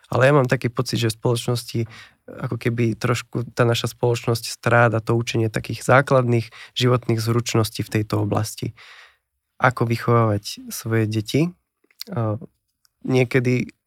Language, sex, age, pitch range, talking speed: English, male, 20-39, 110-125 Hz, 125 wpm